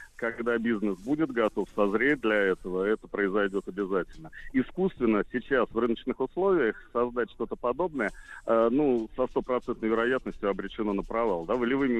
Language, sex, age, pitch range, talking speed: Russian, male, 40-59, 110-135 Hz, 140 wpm